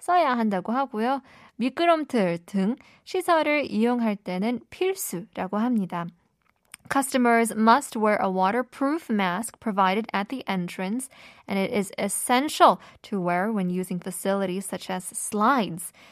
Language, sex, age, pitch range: Korean, female, 20-39, 205-295 Hz